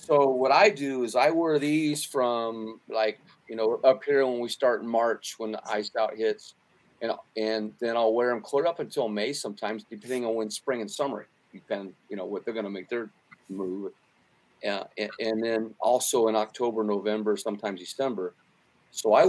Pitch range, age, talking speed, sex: 110-135 Hz, 40-59, 200 wpm, male